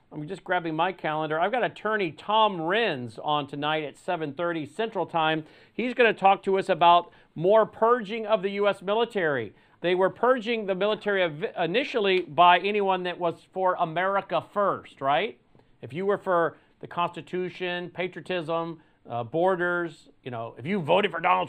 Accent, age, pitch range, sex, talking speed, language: American, 40-59, 160-195 Hz, male, 165 wpm, English